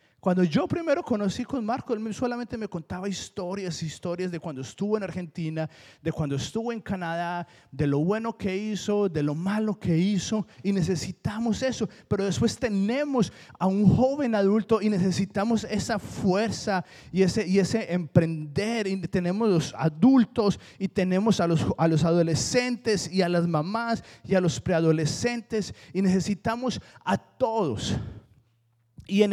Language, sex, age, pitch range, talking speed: Spanish, male, 30-49, 140-205 Hz, 160 wpm